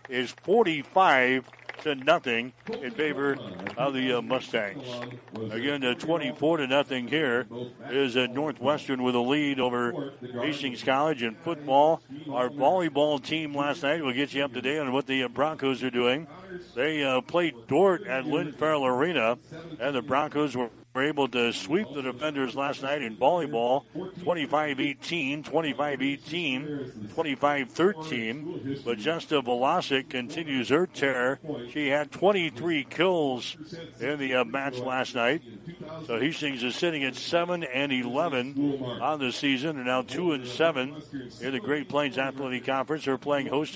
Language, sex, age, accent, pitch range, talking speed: English, male, 60-79, American, 130-150 Hz, 155 wpm